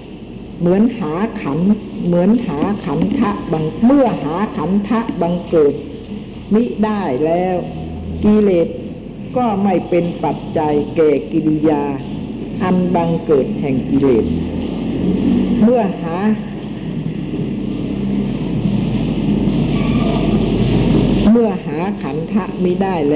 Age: 60-79